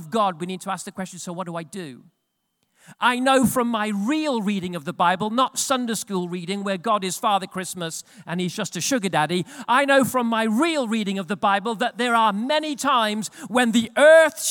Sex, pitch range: male, 175-240 Hz